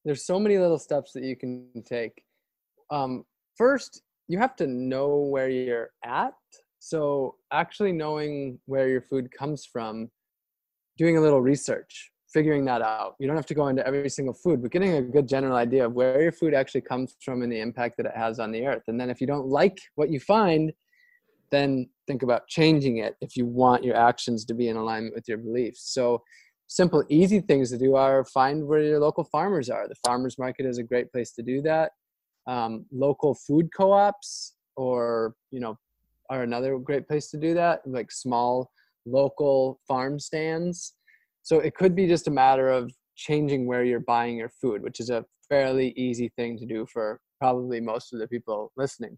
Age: 20-39